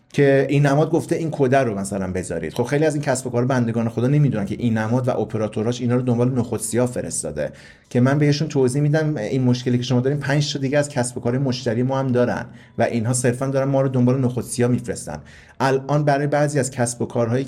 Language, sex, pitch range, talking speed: Persian, male, 115-140 Hz, 225 wpm